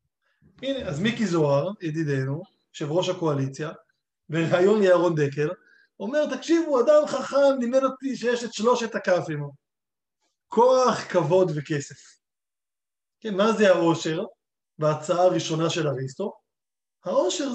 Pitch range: 150-215 Hz